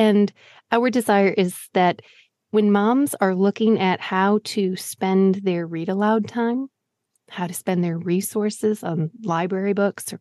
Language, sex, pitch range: English, female, 185-230 Hz